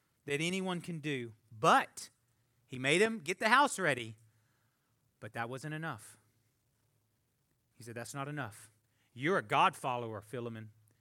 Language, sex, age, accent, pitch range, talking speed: English, male, 30-49, American, 120-160 Hz, 140 wpm